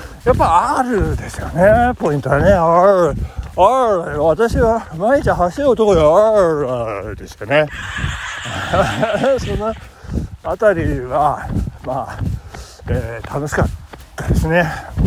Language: Japanese